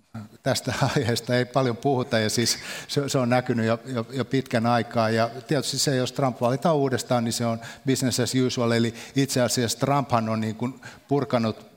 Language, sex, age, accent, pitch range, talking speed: Finnish, male, 60-79, native, 110-130 Hz, 150 wpm